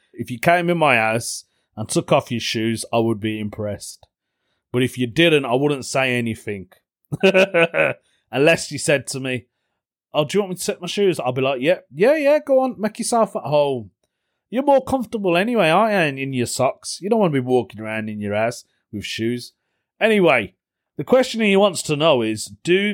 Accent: British